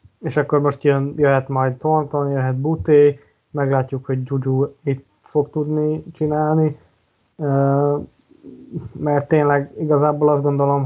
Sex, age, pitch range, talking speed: male, 20-39, 135-145 Hz, 115 wpm